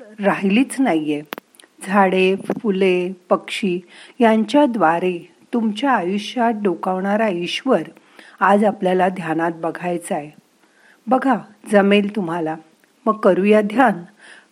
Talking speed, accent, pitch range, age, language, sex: 95 wpm, native, 175-220 Hz, 50-69, Marathi, female